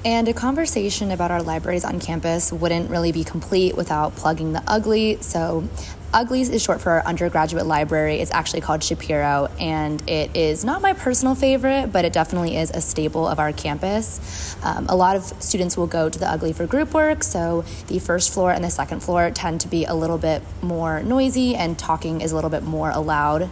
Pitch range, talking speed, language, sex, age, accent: 155-200 Hz, 205 wpm, English, female, 20-39, American